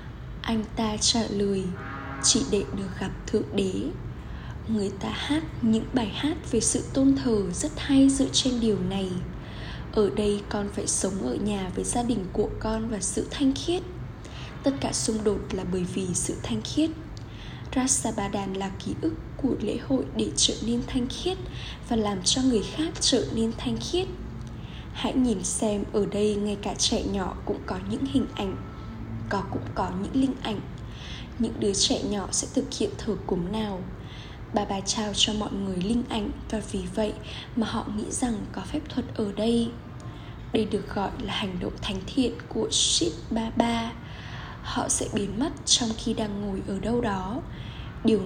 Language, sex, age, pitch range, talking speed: Vietnamese, female, 10-29, 200-245 Hz, 185 wpm